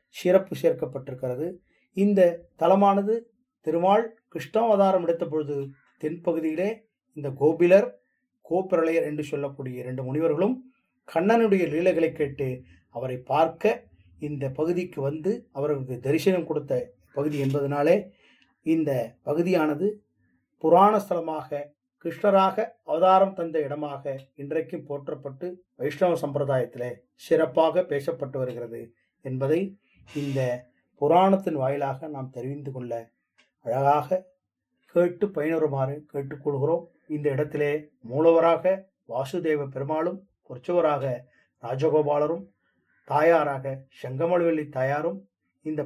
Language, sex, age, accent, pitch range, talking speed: English, male, 30-49, Indian, 140-180 Hz, 80 wpm